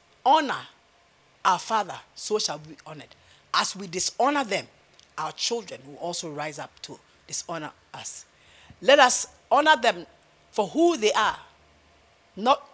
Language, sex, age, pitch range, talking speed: English, female, 50-69, 180-275 Hz, 140 wpm